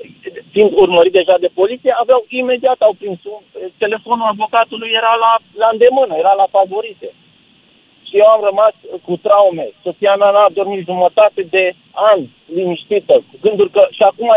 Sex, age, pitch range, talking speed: male, 40-59, 185-230 Hz, 155 wpm